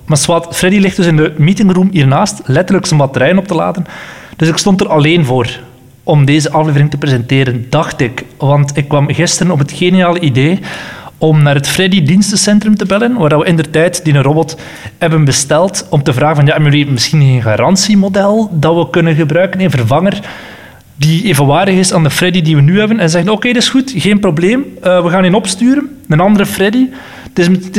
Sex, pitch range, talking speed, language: male, 145-190 Hz, 205 wpm, Dutch